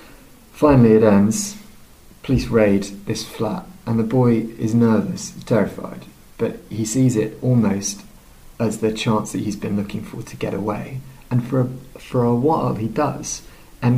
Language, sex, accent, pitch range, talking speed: English, male, British, 105-125 Hz, 165 wpm